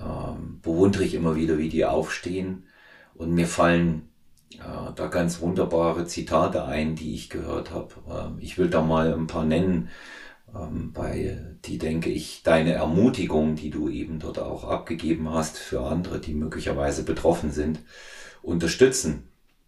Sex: male